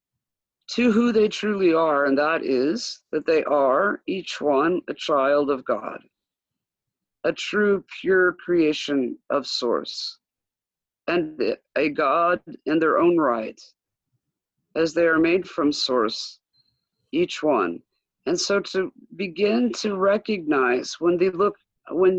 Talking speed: 130 wpm